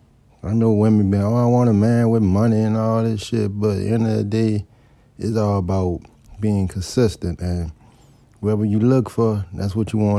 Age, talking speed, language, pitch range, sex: 20-39, 210 wpm, English, 100-115 Hz, male